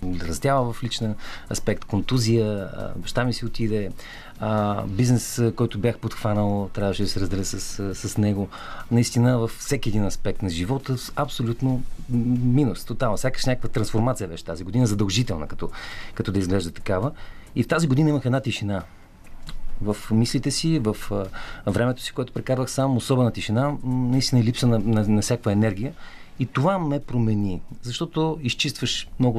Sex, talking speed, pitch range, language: male, 165 wpm, 100-130 Hz, Bulgarian